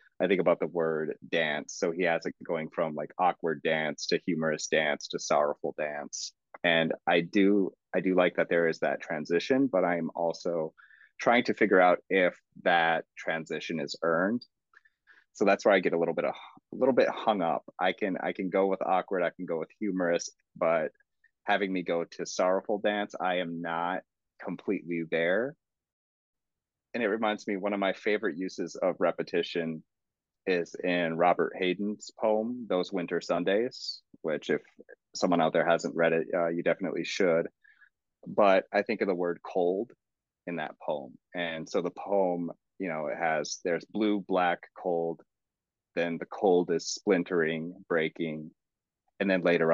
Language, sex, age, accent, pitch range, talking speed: English, male, 30-49, American, 80-95 Hz, 175 wpm